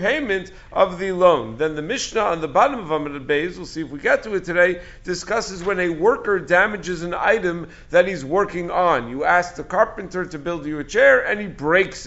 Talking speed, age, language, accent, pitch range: 220 wpm, 50-69, English, American, 160-200 Hz